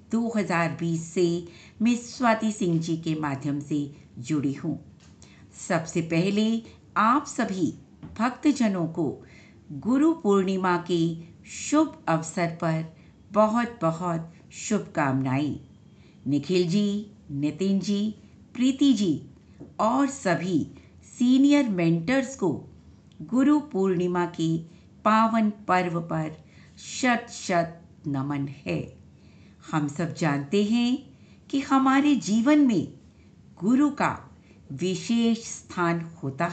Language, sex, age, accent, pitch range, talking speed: Hindi, female, 60-79, native, 160-235 Hz, 100 wpm